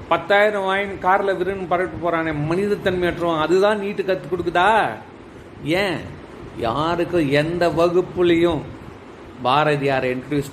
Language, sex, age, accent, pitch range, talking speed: Tamil, male, 40-59, native, 150-195 Hz, 110 wpm